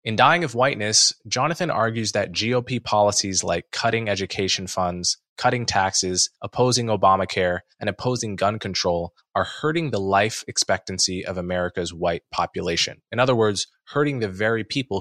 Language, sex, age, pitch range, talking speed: English, male, 20-39, 95-120 Hz, 150 wpm